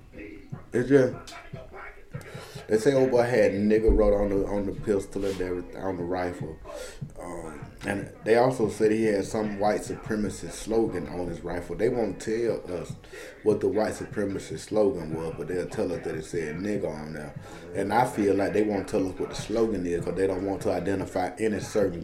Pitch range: 95-125 Hz